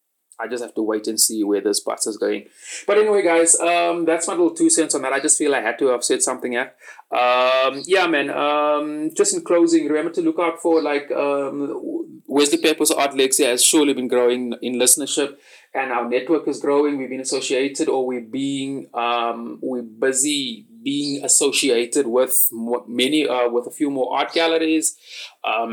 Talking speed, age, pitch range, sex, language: 195 wpm, 30-49, 125-165 Hz, male, English